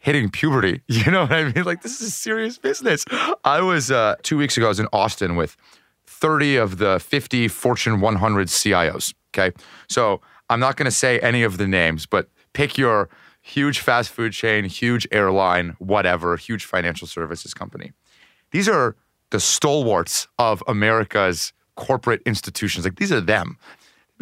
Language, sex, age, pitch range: English, male, 30-49, 100-130 Hz